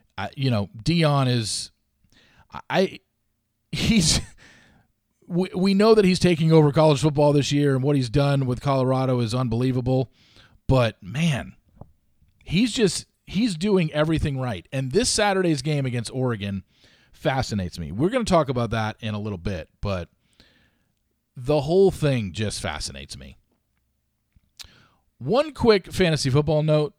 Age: 40-59